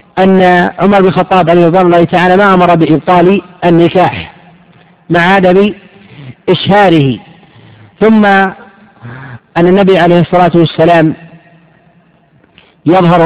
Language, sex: Arabic, male